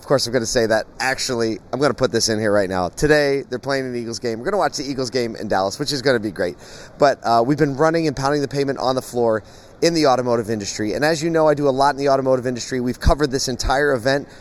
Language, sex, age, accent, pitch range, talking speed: English, male, 30-49, American, 115-145 Hz, 290 wpm